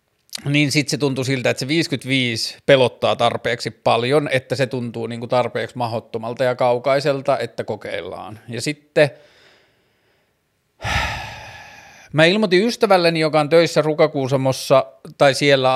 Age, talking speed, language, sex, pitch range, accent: 30-49, 120 wpm, Finnish, male, 120-145 Hz, native